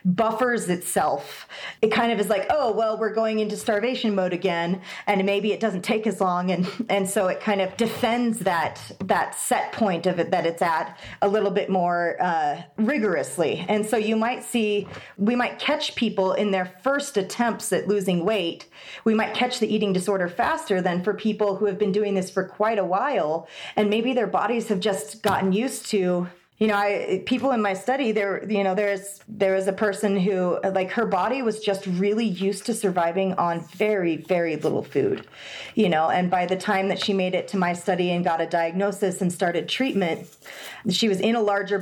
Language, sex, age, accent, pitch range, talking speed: English, female, 30-49, American, 185-215 Hz, 205 wpm